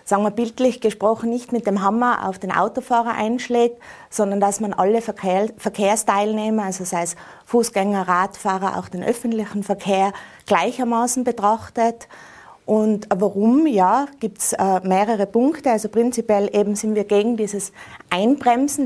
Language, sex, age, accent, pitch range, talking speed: German, female, 30-49, Austrian, 200-235 Hz, 140 wpm